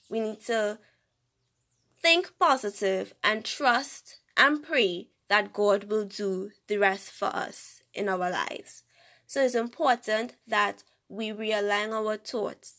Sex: female